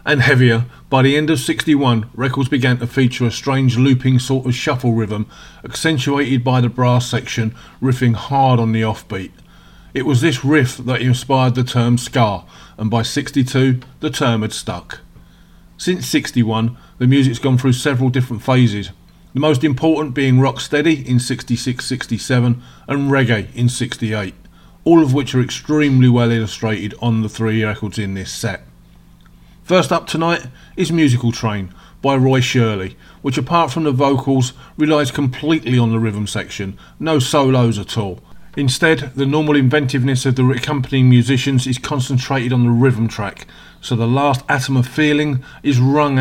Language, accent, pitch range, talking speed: English, British, 115-140 Hz, 160 wpm